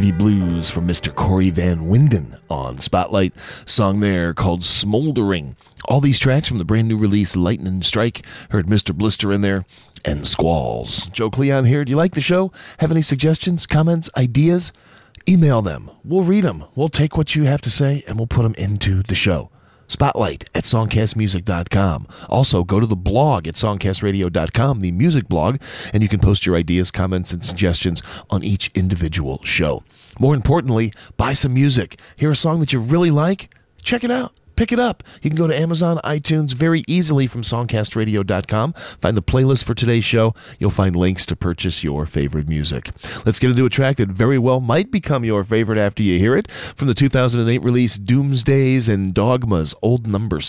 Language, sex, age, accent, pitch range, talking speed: English, male, 40-59, American, 95-135 Hz, 185 wpm